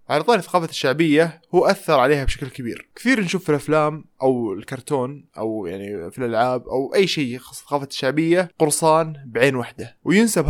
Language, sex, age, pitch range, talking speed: Arabic, male, 20-39, 125-155 Hz, 165 wpm